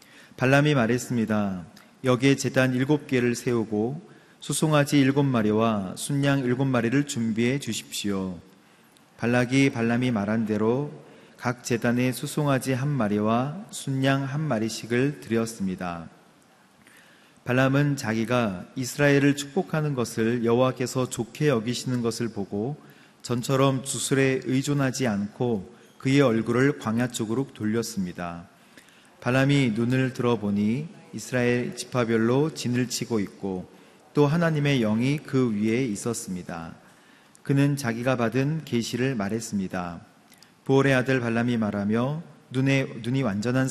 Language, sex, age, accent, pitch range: Korean, male, 40-59, native, 110-135 Hz